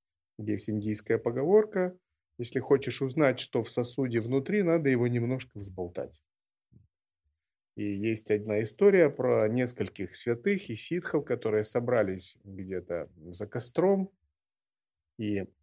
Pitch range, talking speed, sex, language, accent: 105-145 Hz, 110 wpm, male, Russian, native